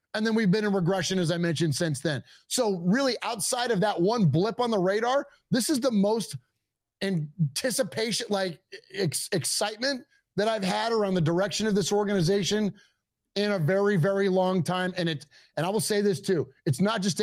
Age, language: 30-49, English